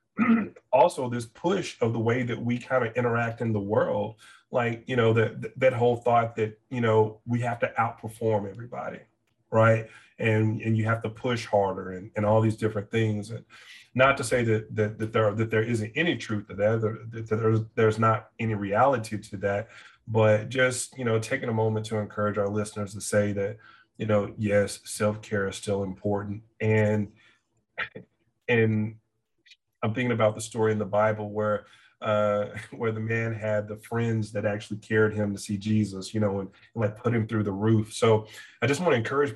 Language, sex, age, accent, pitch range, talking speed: English, male, 30-49, American, 105-120 Hz, 200 wpm